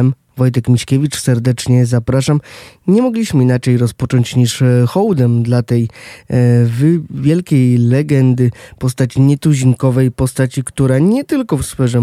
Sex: male